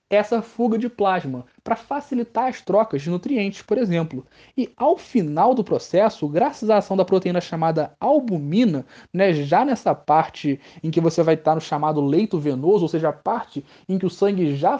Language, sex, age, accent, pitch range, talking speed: Portuguese, male, 20-39, Brazilian, 155-215 Hz, 185 wpm